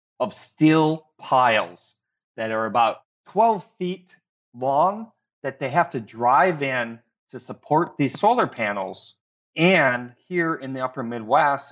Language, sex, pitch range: English, male, 110-140 Hz